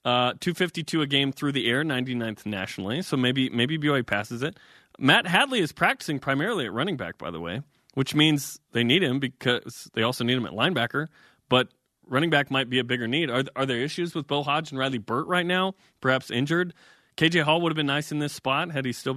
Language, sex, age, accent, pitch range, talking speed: English, male, 20-39, American, 125-170 Hz, 220 wpm